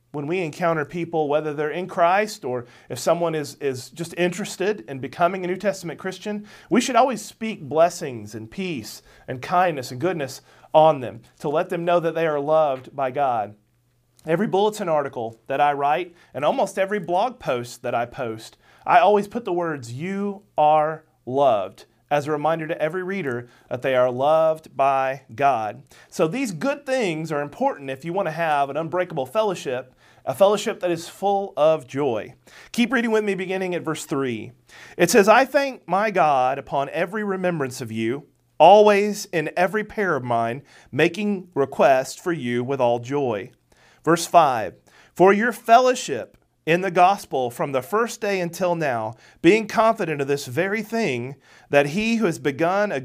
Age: 40-59